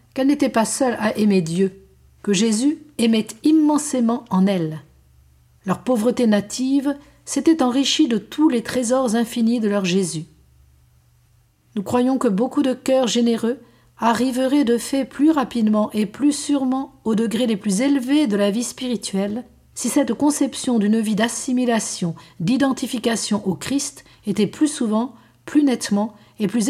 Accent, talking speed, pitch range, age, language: French, 150 wpm, 190-255 Hz, 50-69, French